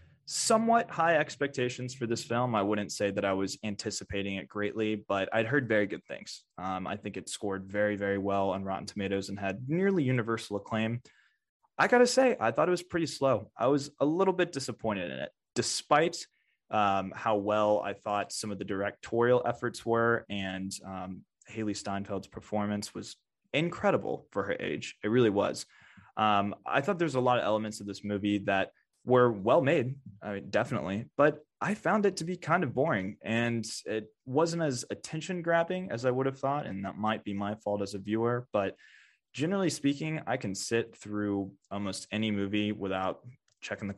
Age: 20-39